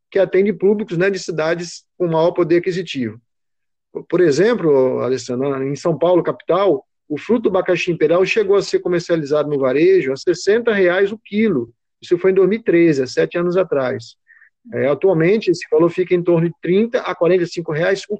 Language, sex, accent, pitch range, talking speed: Portuguese, male, Brazilian, 150-200 Hz, 170 wpm